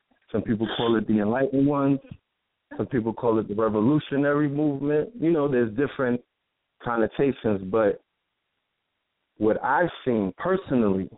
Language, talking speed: English, 130 wpm